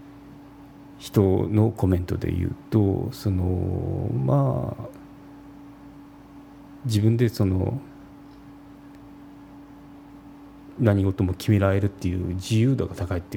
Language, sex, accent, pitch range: Japanese, male, native, 95-140 Hz